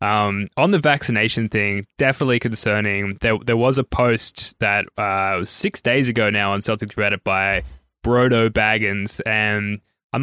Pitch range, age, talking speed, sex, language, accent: 105-125 Hz, 10-29, 160 wpm, male, English, Australian